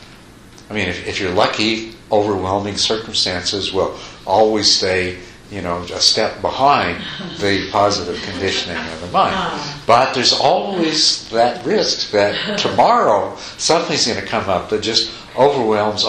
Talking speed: 140 wpm